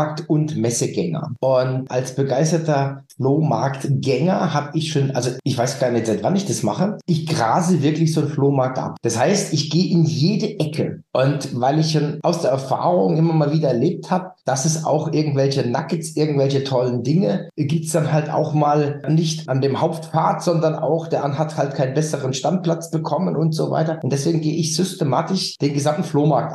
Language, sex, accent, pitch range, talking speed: German, male, German, 135-165 Hz, 190 wpm